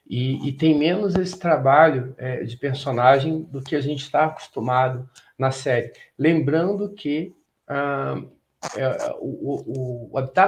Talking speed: 135 wpm